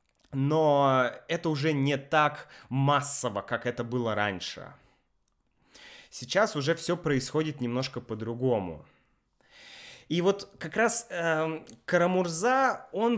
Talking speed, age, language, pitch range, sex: 105 wpm, 20-39, Russian, 125-175 Hz, male